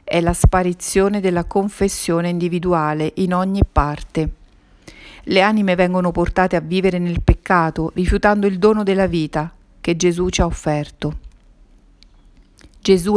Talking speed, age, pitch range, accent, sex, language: 130 wpm, 40-59, 165-190 Hz, native, female, Italian